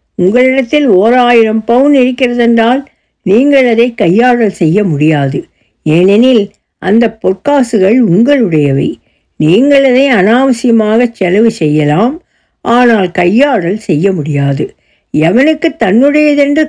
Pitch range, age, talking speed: 175-260 Hz, 60-79, 90 wpm